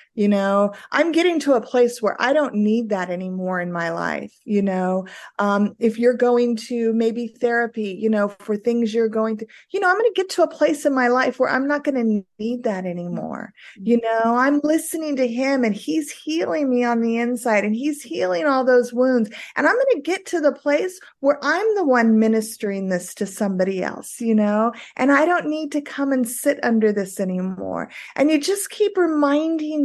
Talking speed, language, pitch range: 215 wpm, English, 220-290 Hz